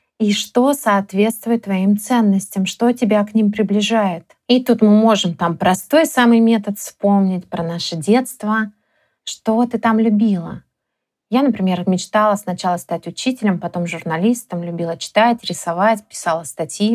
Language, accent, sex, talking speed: Russian, native, female, 140 wpm